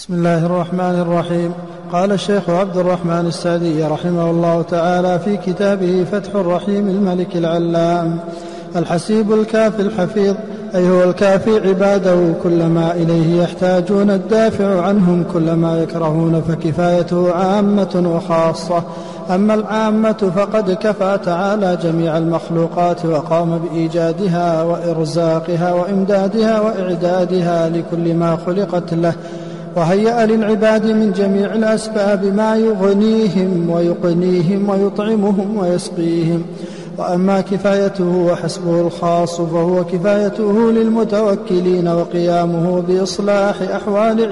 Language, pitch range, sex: Arabic, 170-200 Hz, male